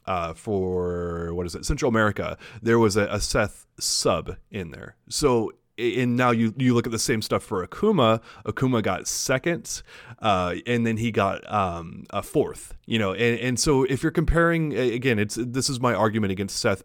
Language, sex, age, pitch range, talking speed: English, male, 30-49, 100-125 Hz, 190 wpm